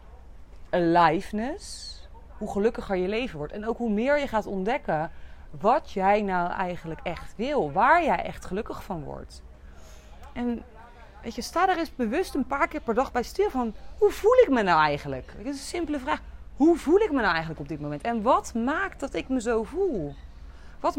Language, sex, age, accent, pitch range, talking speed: Dutch, female, 30-49, Dutch, 170-260 Hz, 195 wpm